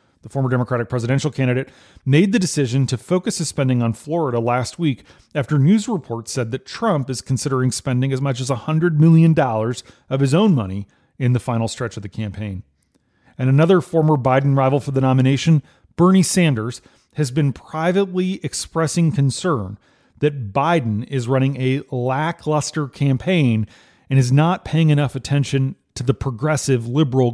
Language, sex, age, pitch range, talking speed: English, male, 30-49, 125-155 Hz, 160 wpm